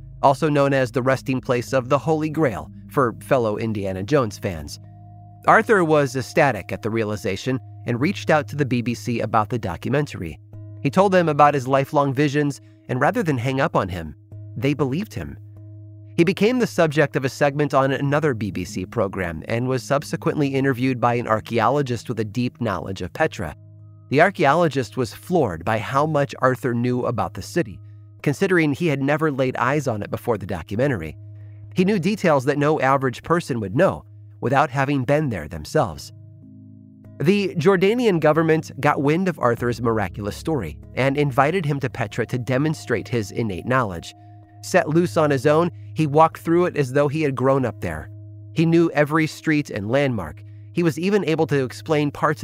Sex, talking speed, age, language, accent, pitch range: male, 180 wpm, 30-49, English, American, 105-150 Hz